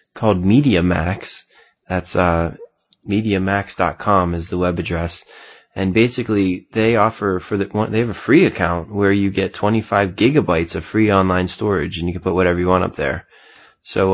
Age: 20-39